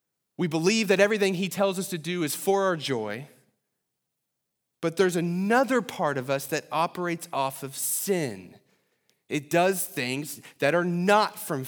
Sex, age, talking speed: male, 30-49, 160 wpm